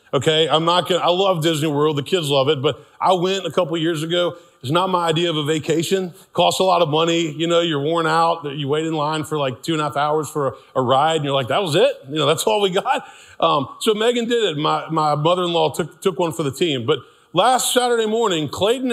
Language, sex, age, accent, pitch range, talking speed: English, male, 30-49, American, 135-180 Hz, 265 wpm